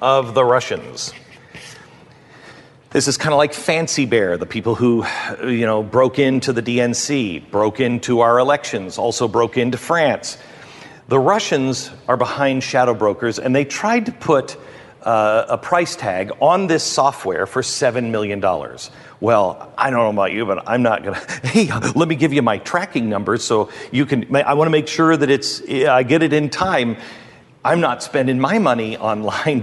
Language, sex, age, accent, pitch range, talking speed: English, male, 40-59, American, 120-155 Hz, 180 wpm